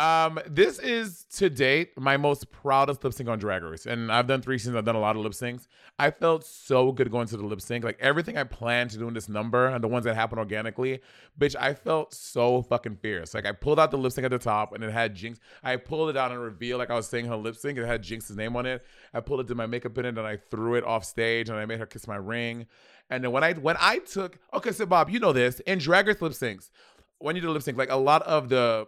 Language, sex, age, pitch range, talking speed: English, male, 30-49, 115-155 Hz, 285 wpm